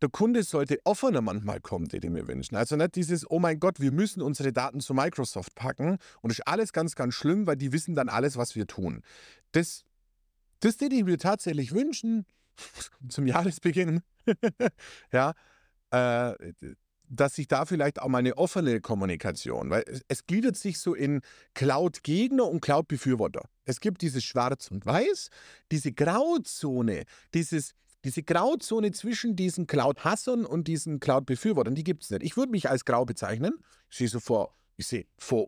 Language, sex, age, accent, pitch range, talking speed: German, male, 50-69, German, 125-180 Hz, 170 wpm